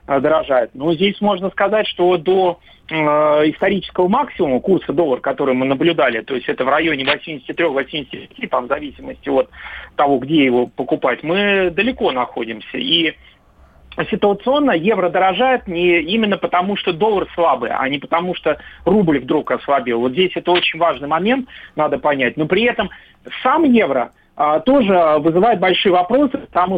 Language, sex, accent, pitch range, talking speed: Russian, male, native, 140-195 Hz, 150 wpm